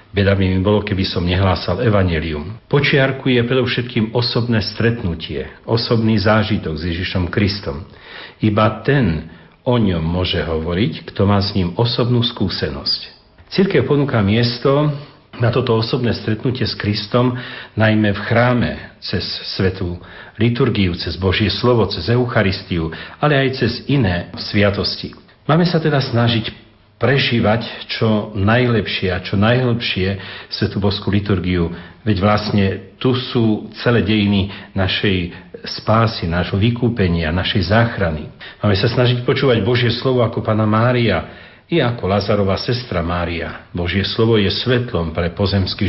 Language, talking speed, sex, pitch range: Slovak, 130 wpm, male, 95-120 Hz